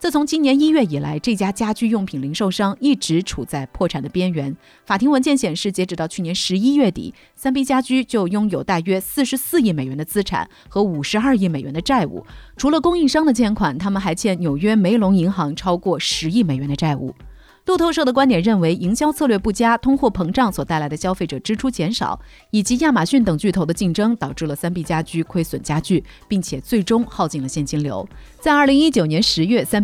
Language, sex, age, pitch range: Chinese, female, 30-49, 165-230 Hz